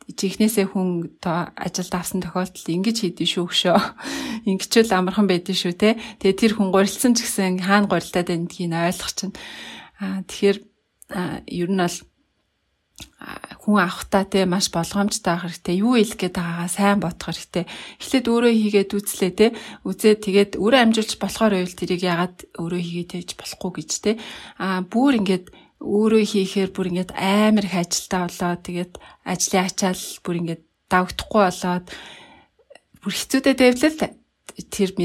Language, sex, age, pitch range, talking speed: English, female, 30-49, 180-215 Hz, 105 wpm